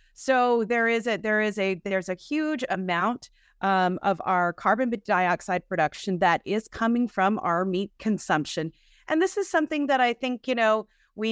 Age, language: 30-49, English